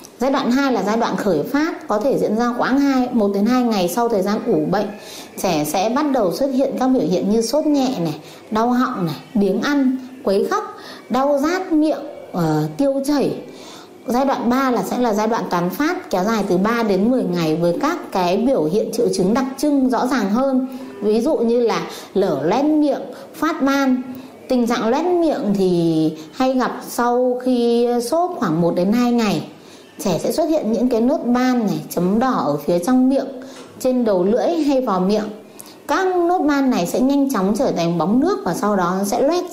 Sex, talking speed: female, 210 wpm